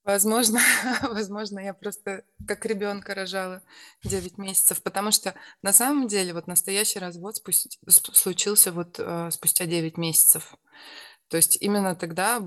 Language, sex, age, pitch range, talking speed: Russian, female, 20-39, 160-195 Hz, 120 wpm